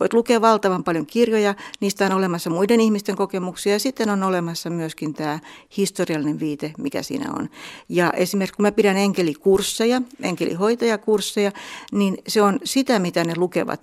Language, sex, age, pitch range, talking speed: Finnish, female, 60-79, 175-215 Hz, 155 wpm